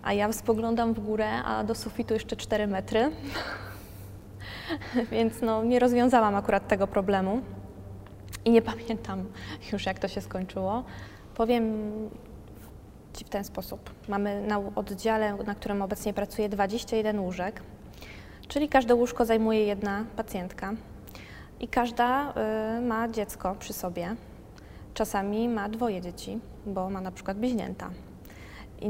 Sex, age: female, 20-39